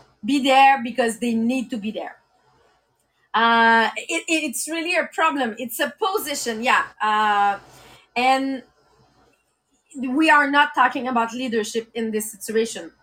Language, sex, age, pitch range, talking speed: English, female, 30-49, 245-315 Hz, 130 wpm